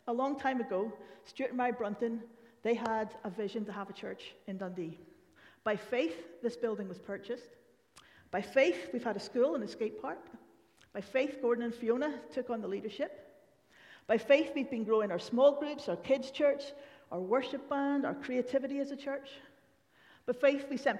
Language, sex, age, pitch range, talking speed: English, female, 40-59, 215-265 Hz, 190 wpm